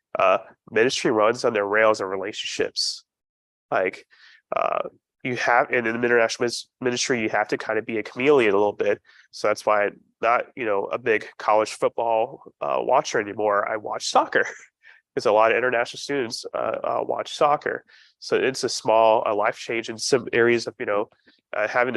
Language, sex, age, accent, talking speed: English, male, 30-49, American, 190 wpm